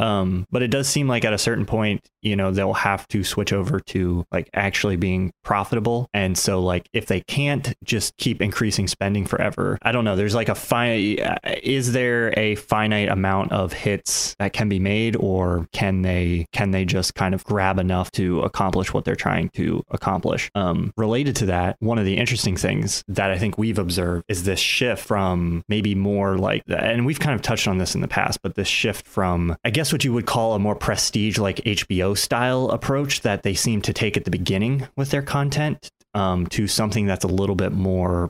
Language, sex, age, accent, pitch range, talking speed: English, male, 20-39, American, 95-115 Hz, 210 wpm